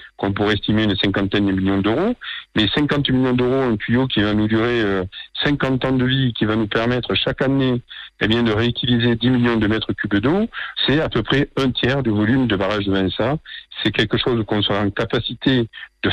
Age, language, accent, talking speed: 50-69, French, French, 215 wpm